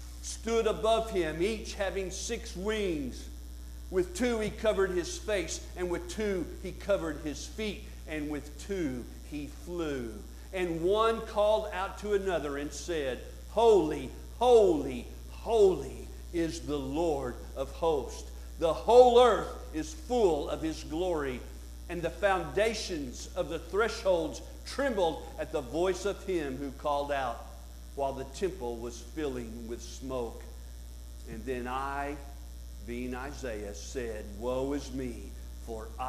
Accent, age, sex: American, 50-69, male